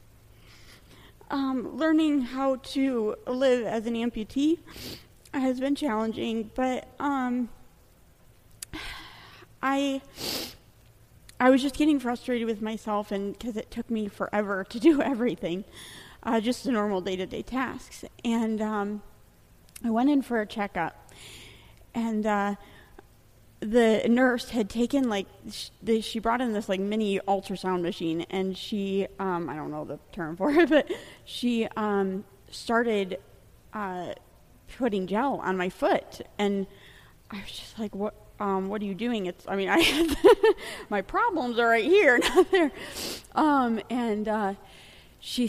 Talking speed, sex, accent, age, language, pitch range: 140 wpm, female, American, 30-49, English, 190-245 Hz